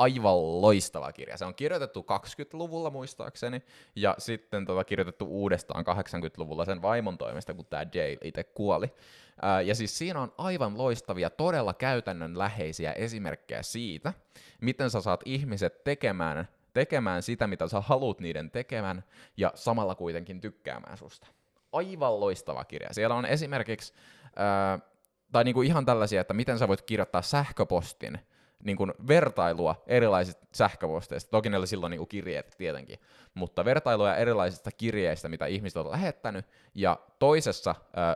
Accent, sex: native, male